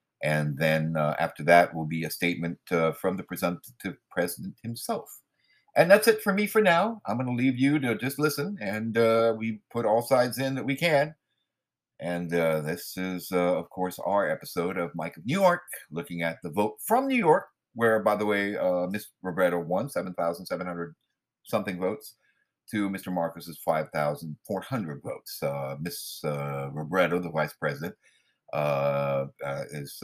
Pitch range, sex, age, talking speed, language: 75-105 Hz, male, 50-69, 175 wpm, English